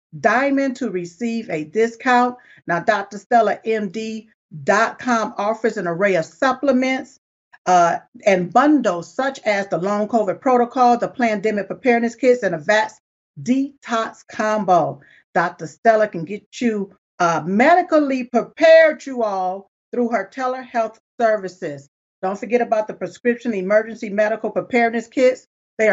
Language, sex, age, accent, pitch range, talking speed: English, female, 50-69, American, 200-245 Hz, 125 wpm